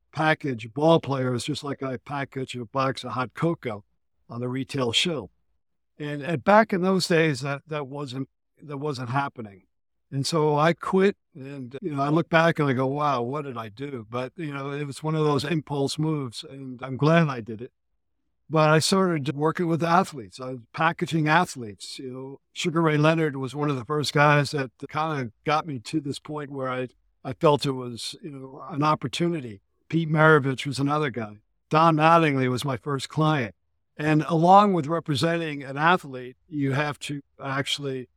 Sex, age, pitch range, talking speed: male, 60-79, 130-155 Hz, 190 wpm